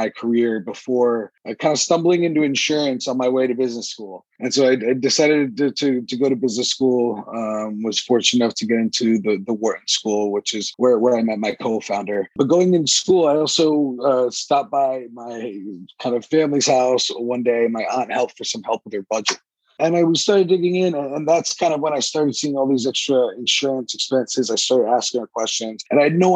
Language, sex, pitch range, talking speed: English, male, 115-140 Hz, 215 wpm